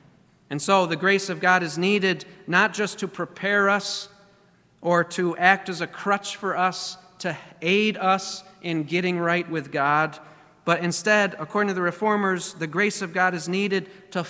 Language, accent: English, American